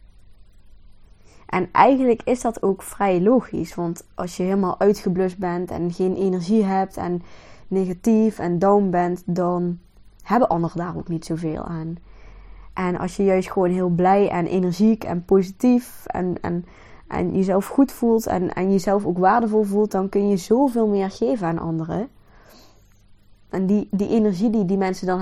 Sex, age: female, 20-39